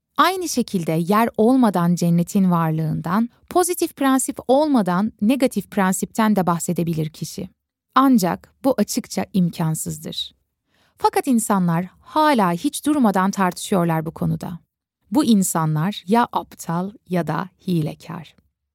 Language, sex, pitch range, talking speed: Turkish, female, 180-250 Hz, 105 wpm